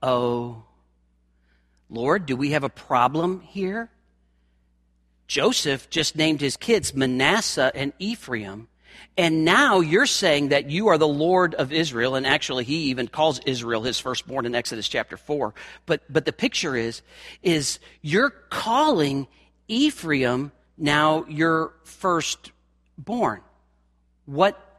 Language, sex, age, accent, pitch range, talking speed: English, male, 40-59, American, 115-170 Hz, 125 wpm